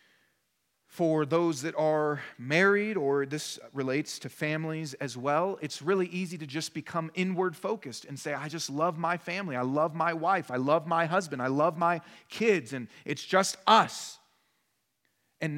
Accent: American